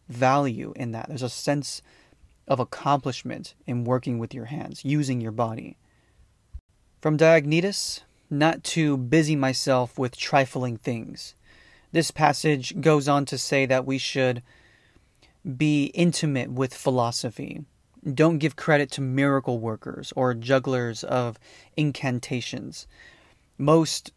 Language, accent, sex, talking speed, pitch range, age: English, American, male, 120 wpm, 125-150 Hz, 30-49